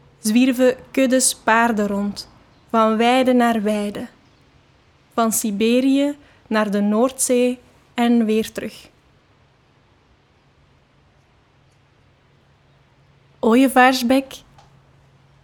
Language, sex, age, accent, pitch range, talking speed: English, female, 20-39, Dutch, 210-245 Hz, 65 wpm